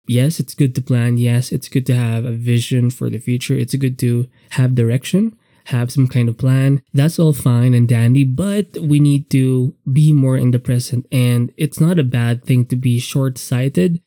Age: 20-39